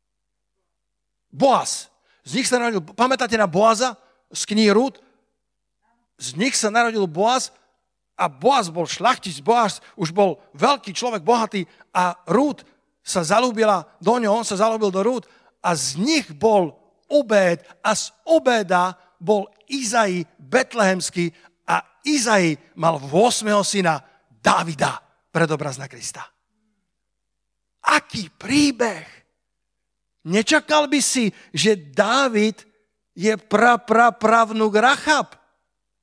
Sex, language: male, Slovak